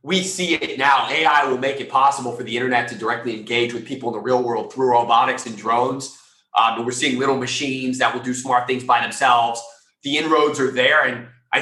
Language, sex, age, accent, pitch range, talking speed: English, male, 30-49, American, 125-160 Hz, 225 wpm